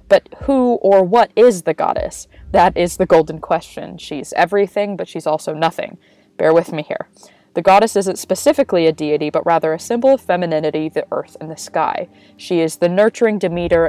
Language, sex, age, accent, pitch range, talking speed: English, female, 20-39, American, 160-205 Hz, 190 wpm